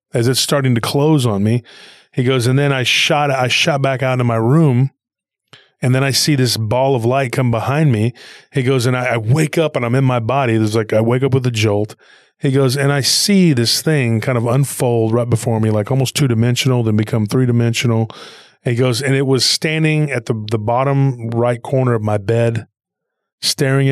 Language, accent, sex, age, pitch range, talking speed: English, American, male, 30-49, 115-135 Hz, 220 wpm